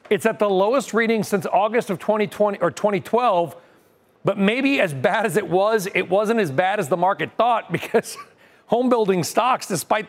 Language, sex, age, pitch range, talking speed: English, male, 40-59, 160-210 Hz, 185 wpm